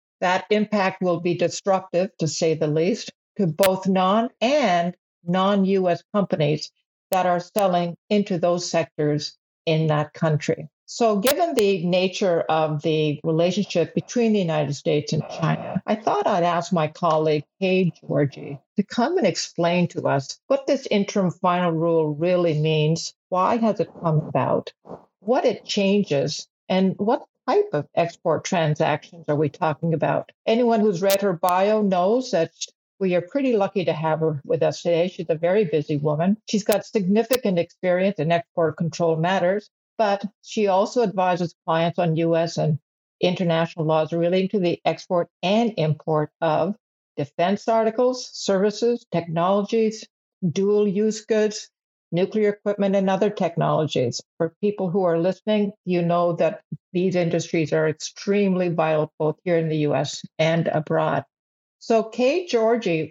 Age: 60-79